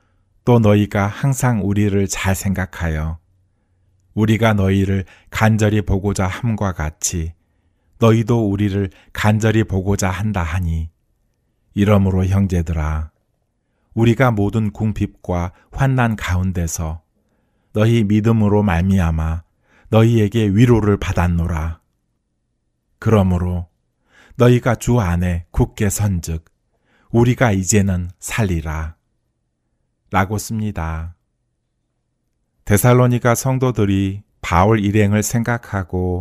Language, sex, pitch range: Korean, male, 90-110 Hz